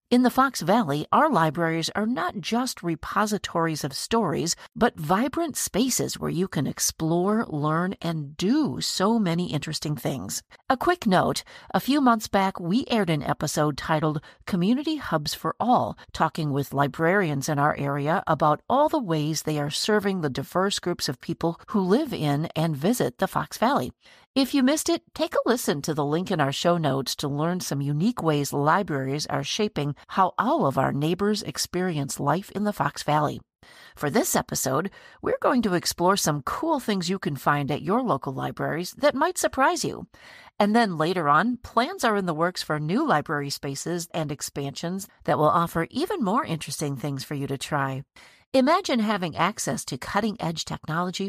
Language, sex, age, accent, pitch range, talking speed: English, female, 50-69, American, 150-215 Hz, 180 wpm